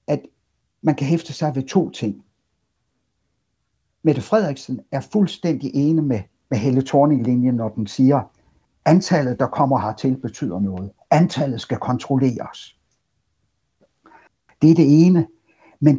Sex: male